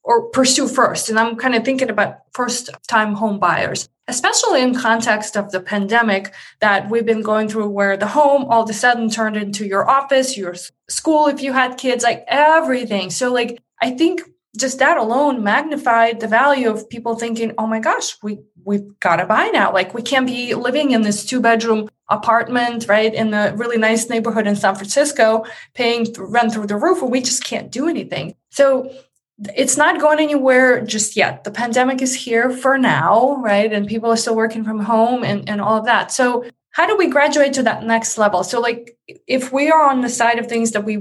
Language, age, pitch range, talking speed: English, 20-39, 210-255 Hz, 210 wpm